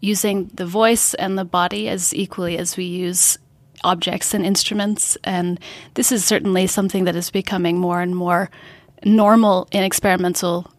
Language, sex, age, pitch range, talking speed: English, female, 20-39, 180-205 Hz, 155 wpm